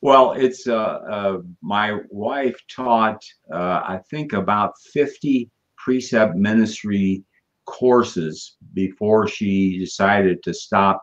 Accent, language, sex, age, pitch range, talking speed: American, English, male, 60-79, 95-120 Hz, 110 wpm